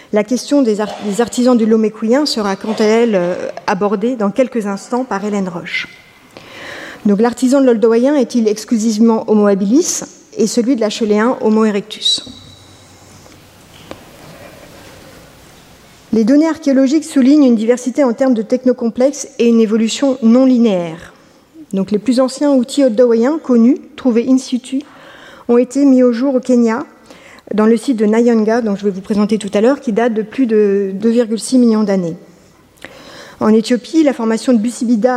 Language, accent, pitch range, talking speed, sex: French, French, 215-260 Hz, 160 wpm, female